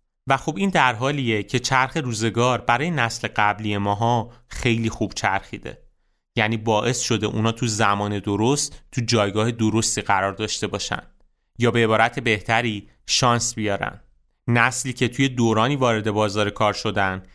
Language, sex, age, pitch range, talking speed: Persian, male, 30-49, 105-130 Hz, 145 wpm